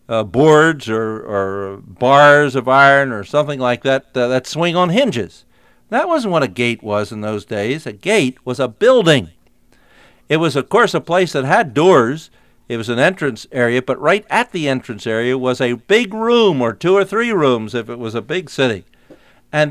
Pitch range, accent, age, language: 125-200 Hz, American, 50-69, English